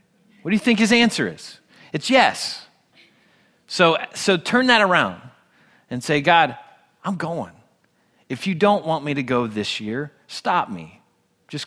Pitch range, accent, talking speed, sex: 120-165 Hz, American, 160 wpm, male